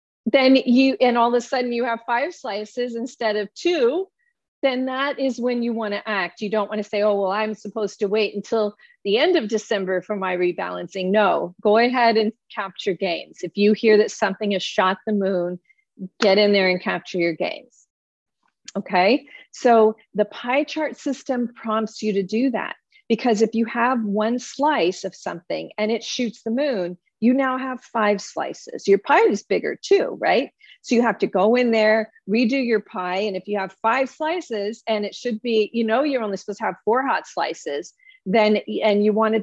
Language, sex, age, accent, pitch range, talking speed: English, female, 40-59, American, 205-260 Hz, 200 wpm